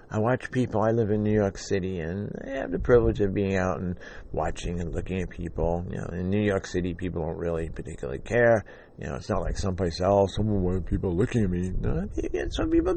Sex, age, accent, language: male, 50-69, American, English